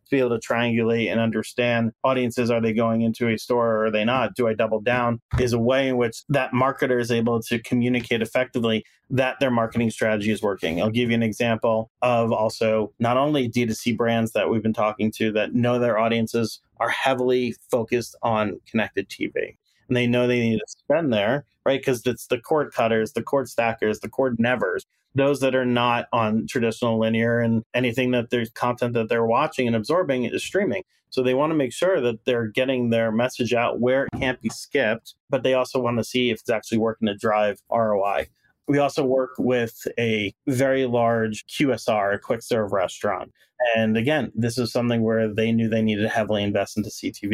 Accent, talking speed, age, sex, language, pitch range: American, 205 wpm, 30-49, male, English, 110-125 Hz